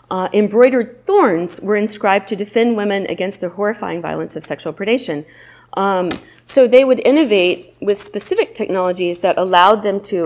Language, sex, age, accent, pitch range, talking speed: English, female, 30-49, American, 185-245 Hz, 160 wpm